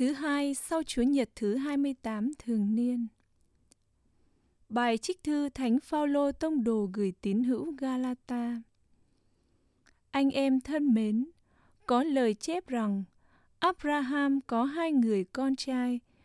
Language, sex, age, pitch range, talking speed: English, female, 20-39, 215-285 Hz, 125 wpm